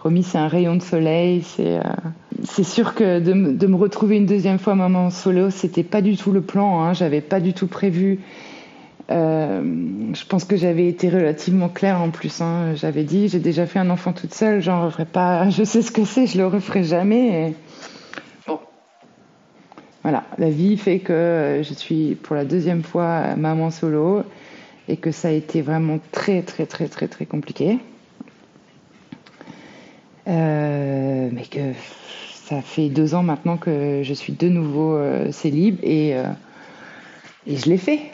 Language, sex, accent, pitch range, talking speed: French, female, French, 155-195 Hz, 175 wpm